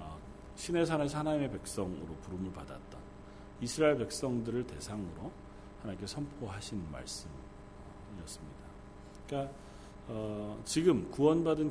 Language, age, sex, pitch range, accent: Korean, 40-59, male, 100-135 Hz, native